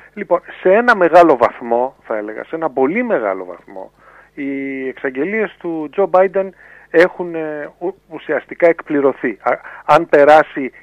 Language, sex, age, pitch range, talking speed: Greek, male, 40-59, 130-185 Hz, 120 wpm